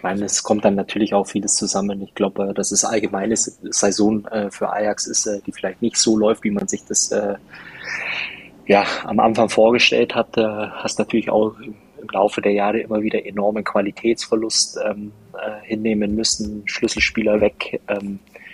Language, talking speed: German, 160 wpm